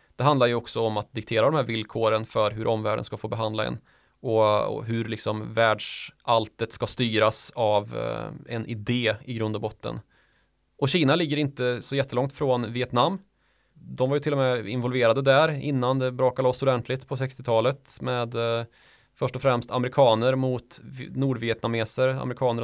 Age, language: 20-39, Swedish